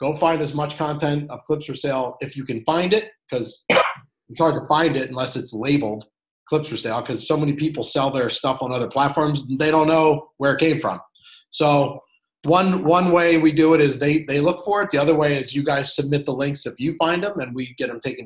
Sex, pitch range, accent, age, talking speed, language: male, 130-160 Hz, American, 30-49, 245 wpm, English